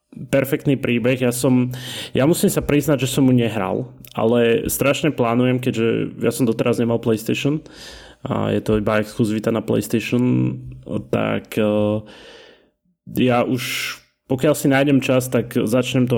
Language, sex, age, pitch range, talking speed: Slovak, male, 20-39, 105-130 Hz, 140 wpm